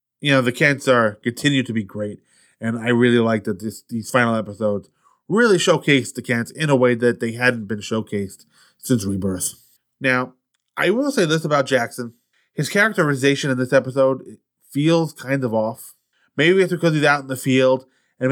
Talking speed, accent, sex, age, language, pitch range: 185 wpm, American, male, 20-39, English, 115-145 Hz